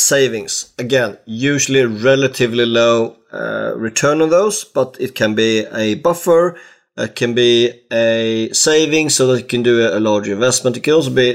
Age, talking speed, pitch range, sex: 30-49, 170 wpm, 115-135 Hz, male